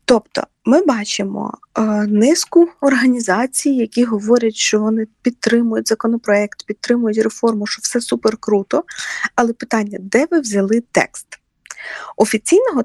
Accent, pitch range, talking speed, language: native, 215-275 Hz, 115 wpm, Ukrainian